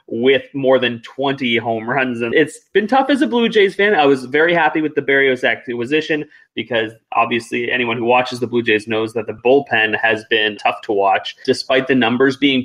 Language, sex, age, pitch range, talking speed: English, male, 20-39, 115-140 Hz, 210 wpm